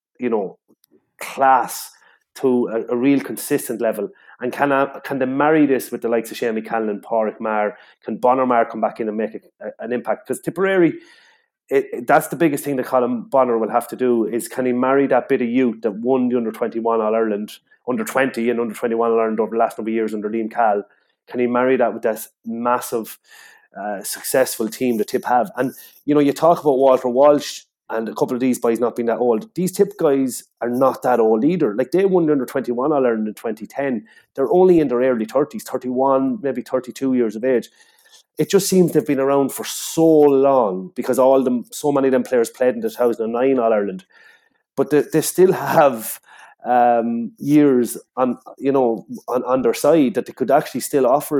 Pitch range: 115-140 Hz